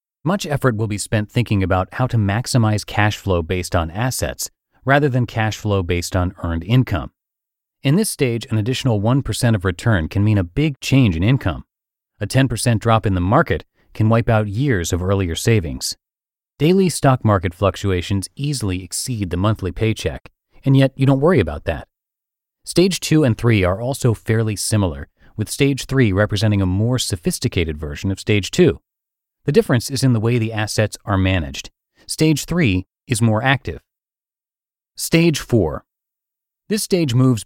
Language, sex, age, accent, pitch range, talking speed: English, male, 30-49, American, 95-130 Hz, 170 wpm